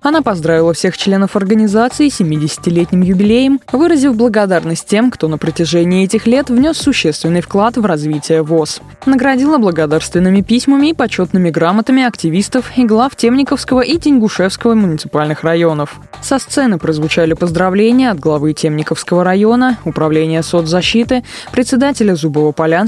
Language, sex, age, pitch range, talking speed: Russian, female, 20-39, 160-235 Hz, 125 wpm